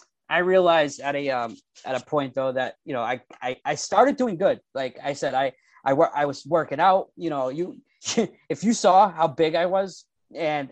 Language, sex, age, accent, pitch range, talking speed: English, male, 20-39, American, 135-170 Hz, 215 wpm